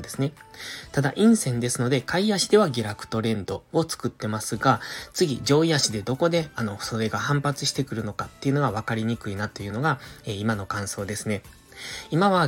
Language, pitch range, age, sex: Japanese, 110-160 Hz, 20-39, male